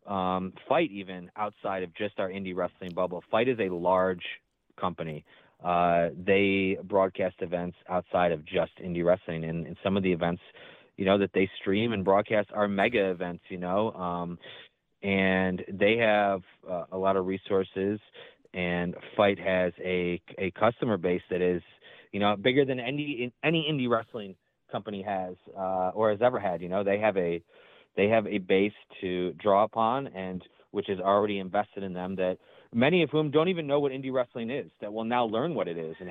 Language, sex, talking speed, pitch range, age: English, male, 190 wpm, 90-105 Hz, 30-49